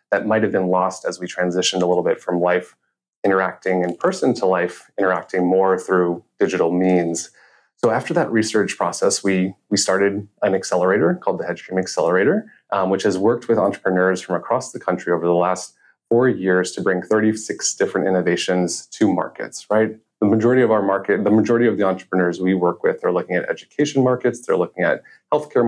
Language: English